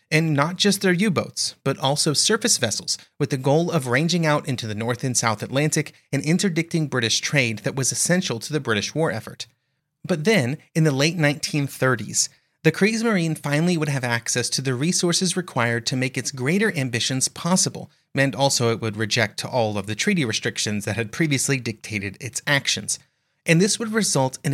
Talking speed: 190 wpm